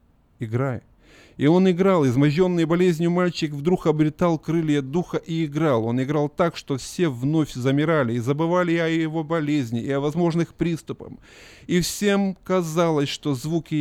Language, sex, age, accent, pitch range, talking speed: Russian, male, 30-49, native, 115-150 Hz, 150 wpm